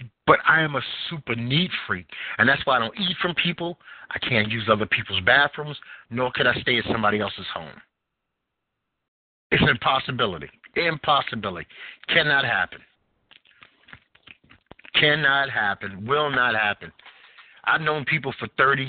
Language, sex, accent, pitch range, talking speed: English, male, American, 115-145 Hz, 145 wpm